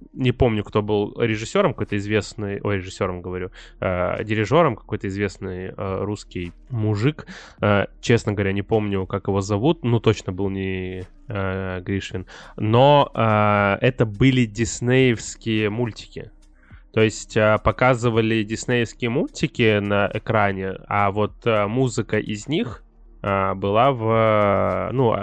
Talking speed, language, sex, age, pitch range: 135 wpm, Russian, male, 20-39, 100-120 Hz